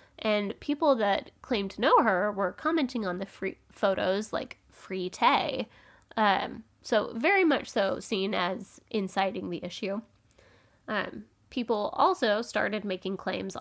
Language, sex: English, female